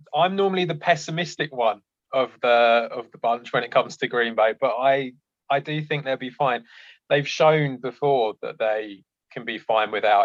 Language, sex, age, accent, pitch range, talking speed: English, male, 20-39, British, 120-145 Hz, 195 wpm